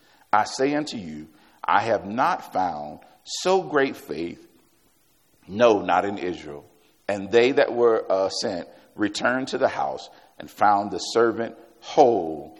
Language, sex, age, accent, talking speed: English, male, 50-69, American, 145 wpm